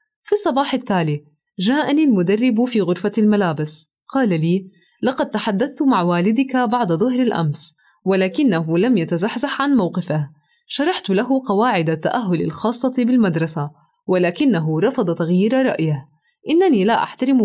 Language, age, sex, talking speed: Arabic, 20-39, female, 120 wpm